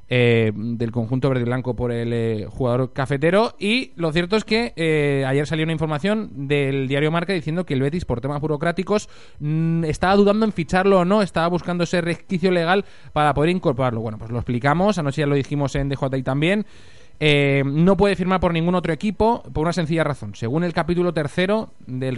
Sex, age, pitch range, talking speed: male, 20-39, 135-190 Hz, 200 wpm